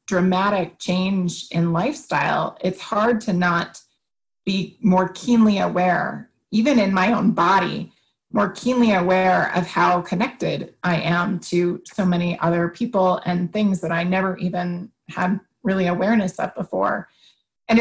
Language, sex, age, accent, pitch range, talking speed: English, female, 30-49, American, 180-210 Hz, 140 wpm